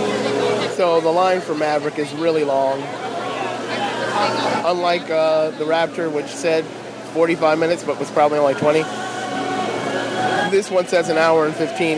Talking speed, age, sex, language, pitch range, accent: 140 wpm, 30-49, male, English, 150-175 Hz, American